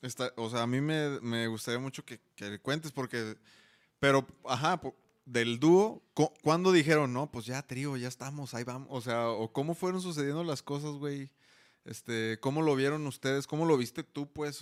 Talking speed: 195 wpm